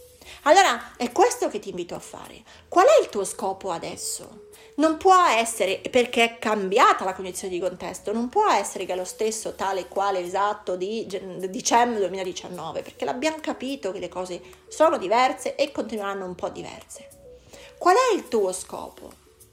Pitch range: 200-300 Hz